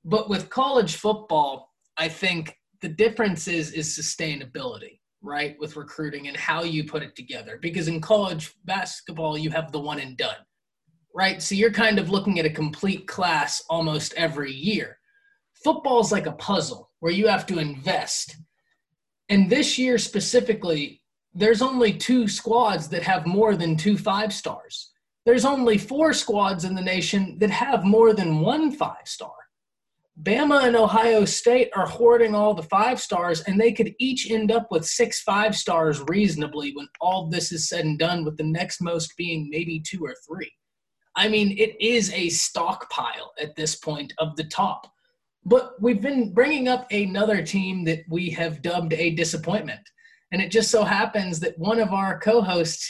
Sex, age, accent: male, 20-39, American